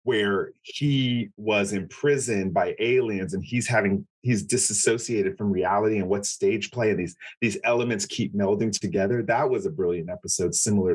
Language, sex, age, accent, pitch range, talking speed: English, male, 30-49, American, 100-130 Hz, 165 wpm